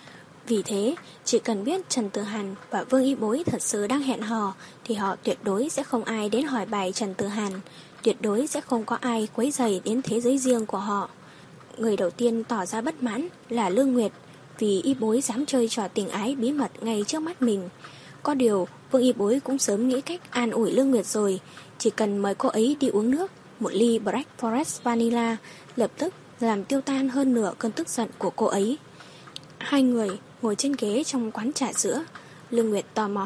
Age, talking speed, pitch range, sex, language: 10-29, 220 wpm, 205-260 Hz, female, Vietnamese